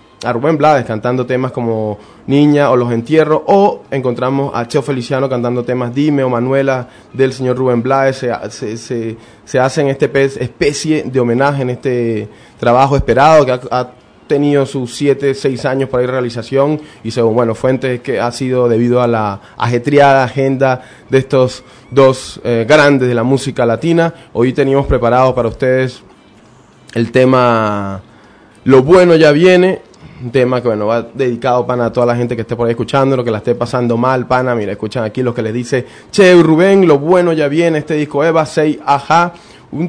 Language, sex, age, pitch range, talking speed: Spanish, male, 20-39, 120-145 Hz, 185 wpm